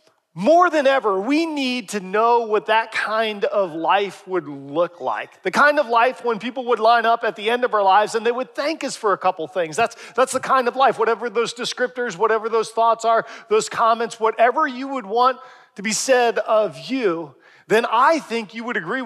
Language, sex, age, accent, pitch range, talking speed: English, male, 40-59, American, 185-235 Hz, 215 wpm